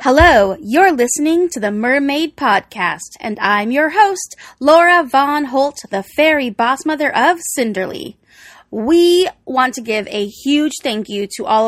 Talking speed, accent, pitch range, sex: 155 wpm, American, 225-310 Hz, female